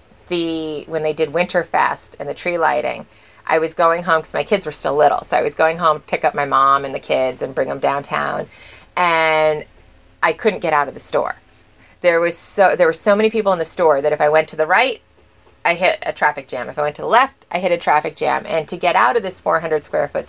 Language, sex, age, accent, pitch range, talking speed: English, female, 30-49, American, 155-205 Hz, 255 wpm